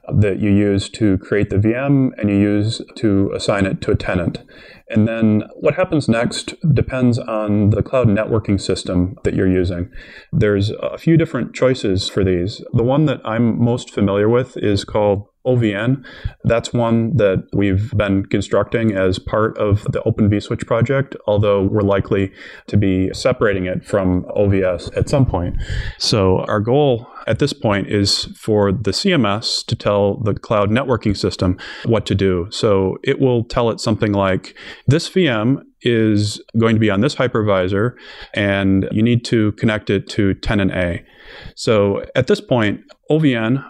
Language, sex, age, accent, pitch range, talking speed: English, male, 20-39, American, 100-120 Hz, 165 wpm